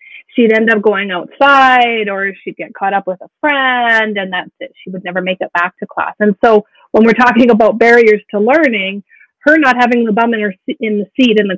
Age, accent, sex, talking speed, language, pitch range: 30-49, American, female, 235 wpm, English, 195-255 Hz